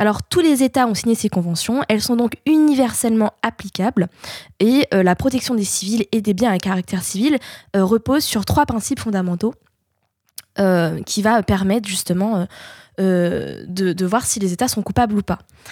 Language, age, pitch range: French, 20-39, 195-245 Hz